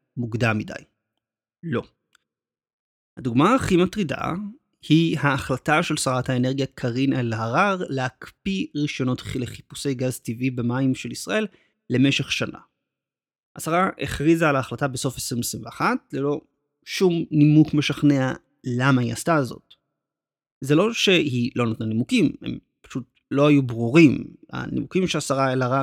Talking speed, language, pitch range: 120 wpm, Hebrew, 125-160 Hz